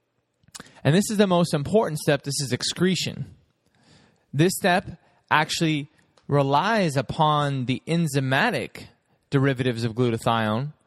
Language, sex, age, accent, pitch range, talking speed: English, male, 20-39, American, 125-160 Hz, 110 wpm